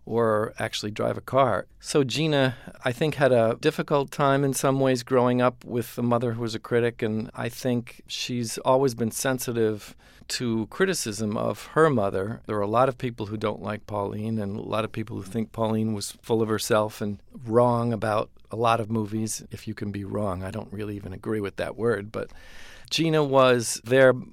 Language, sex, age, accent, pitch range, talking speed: English, male, 50-69, American, 105-125 Hz, 205 wpm